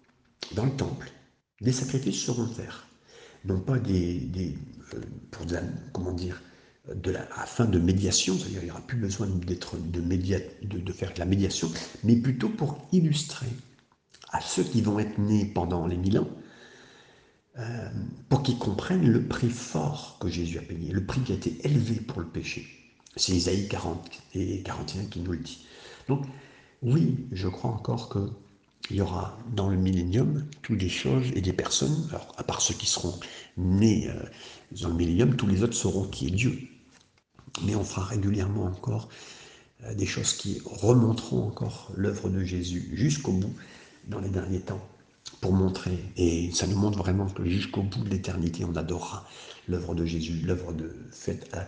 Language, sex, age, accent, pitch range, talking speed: French, male, 60-79, French, 90-120 Hz, 180 wpm